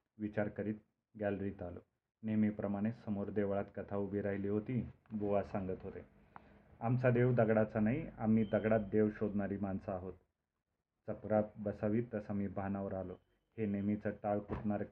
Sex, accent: male, native